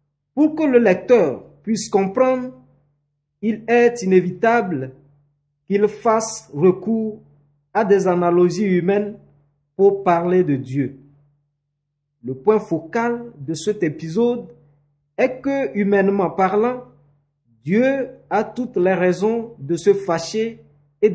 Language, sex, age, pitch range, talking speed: French, male, 50-69, 145-210 Hz, 110 wpm